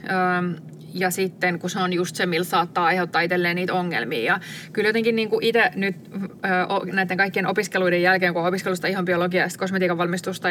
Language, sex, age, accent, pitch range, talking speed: Finnish, female, 20-39, native, 175-205 Hz, 175 wpm